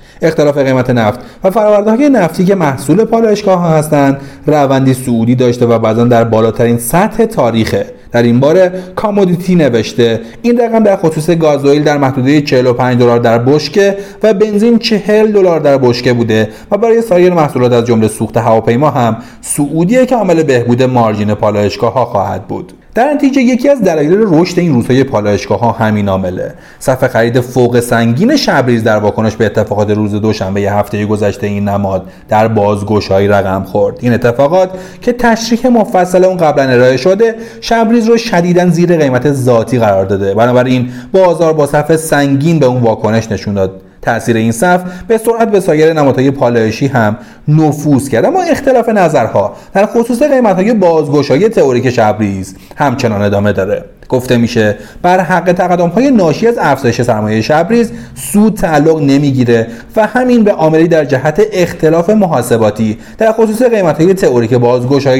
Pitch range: 115-185 Hz